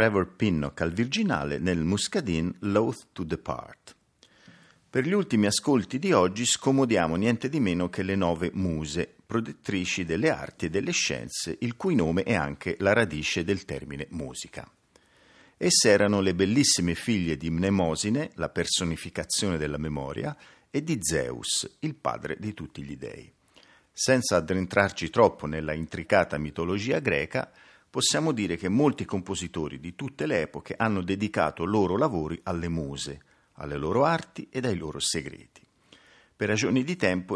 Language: Italian